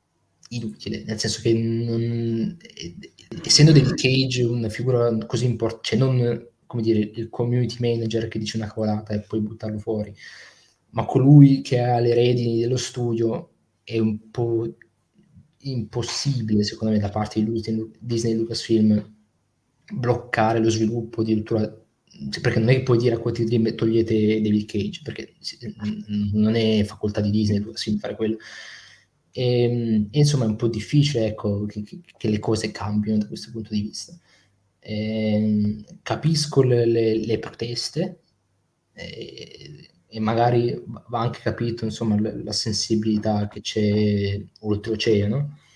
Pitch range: 105-120 Hz